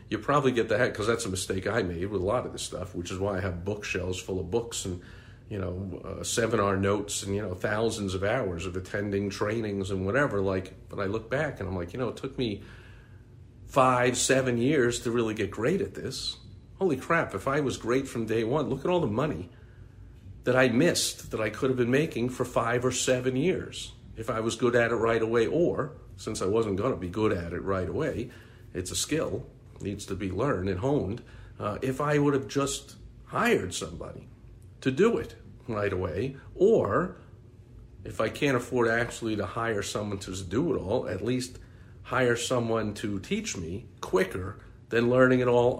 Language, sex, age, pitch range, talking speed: English, male, 50-69, 95-125 Hz, 210 wpm